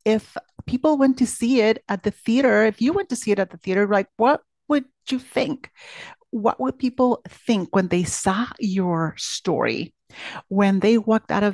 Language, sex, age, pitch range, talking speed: English, female, 40-59, 185-245 Hz, 190 wpm